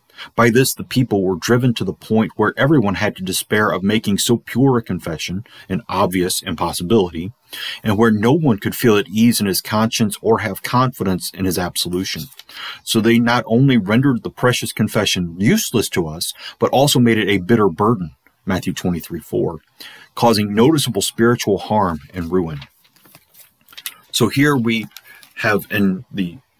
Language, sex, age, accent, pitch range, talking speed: English, male, 40-59, American, 95-120 Hz, 165 wpm